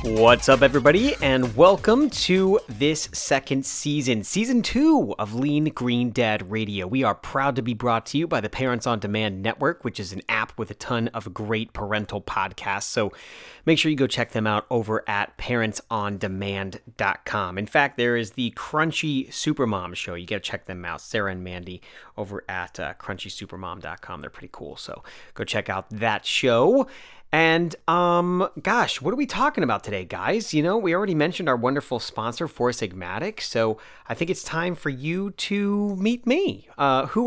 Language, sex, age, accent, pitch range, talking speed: English, male, 30-49, American, 110-165 Hz, 185 wpm